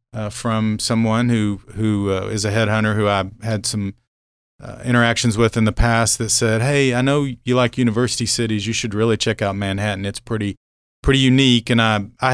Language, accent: English, American